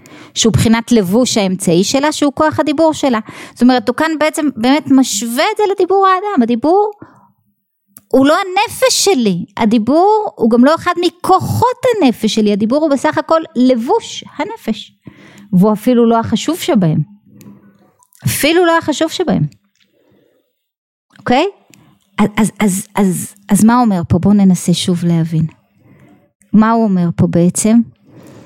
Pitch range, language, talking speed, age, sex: 205-295 Hz, Hebrew, 140 wpm, 20-39, female